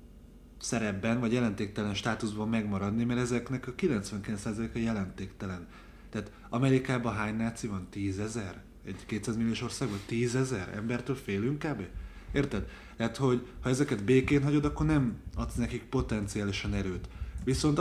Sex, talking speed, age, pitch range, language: male, 130 wpm, 30-49, 100-125 Hz, Hungarian